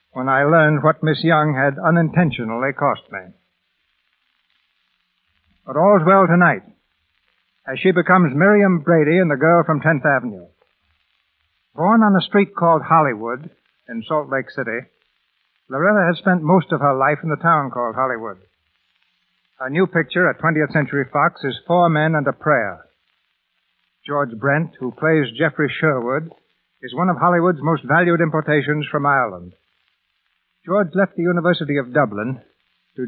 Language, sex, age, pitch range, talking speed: English, male, 60-79, 135-175 Hz, 150 wpm